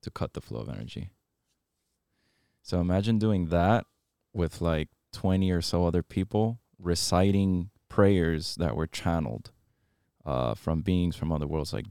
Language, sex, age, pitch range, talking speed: English, male, 20-39, 80-95 Hz, 145 wpm